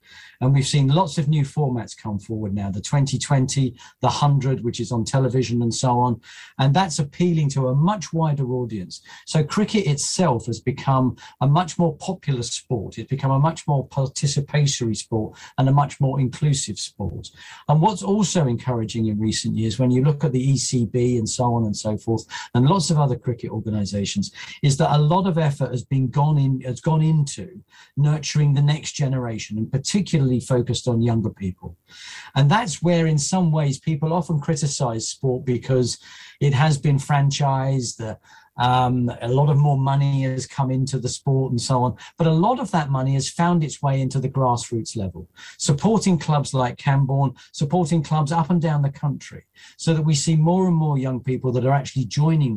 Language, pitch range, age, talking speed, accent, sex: English, 120-155 Hz, 40-59, 190 wpm, British, male